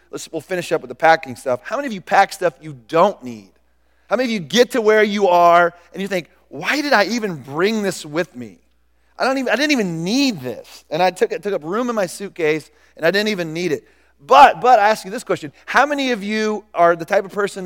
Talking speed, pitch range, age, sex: 260 wpm, 145-210 Hz, 40-59, male